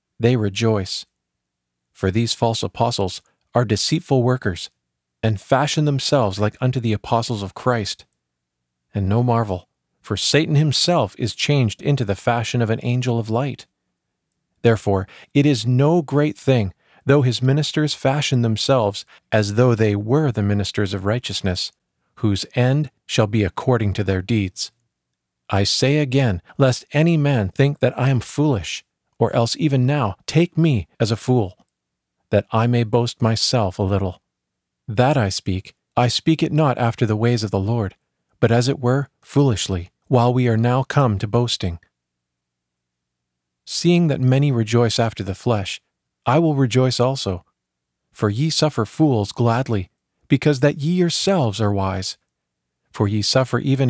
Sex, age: male, 40-59